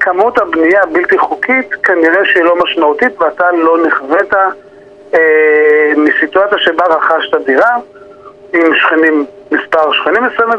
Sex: male